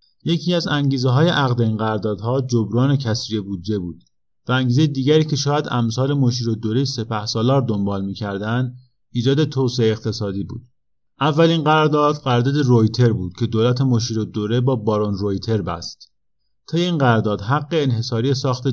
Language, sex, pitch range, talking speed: Persian, male, 110-135 Hz, 150 wpm